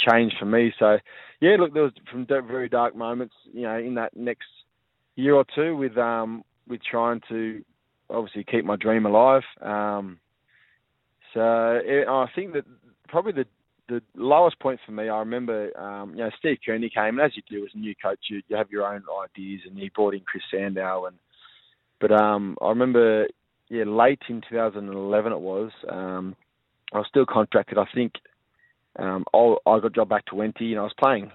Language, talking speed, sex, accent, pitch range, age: English, 190 wpm, male, Australian, 100-120 Hz, 20-39